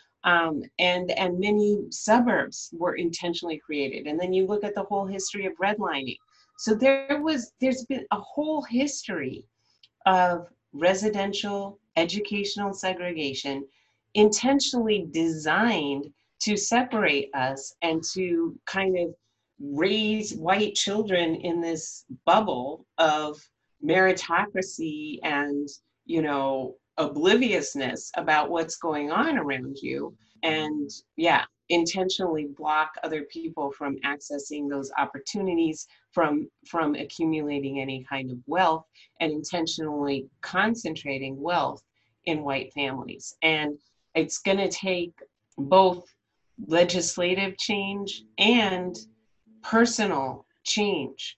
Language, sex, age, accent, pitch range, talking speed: English, female, 40-59, American, 150-205 Hz, 105 wpm